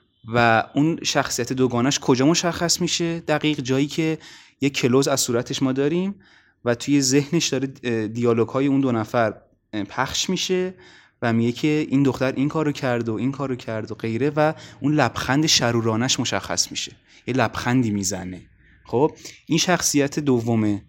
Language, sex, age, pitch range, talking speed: Persian, male, 20-39, 115-155 Hz, 155 wpm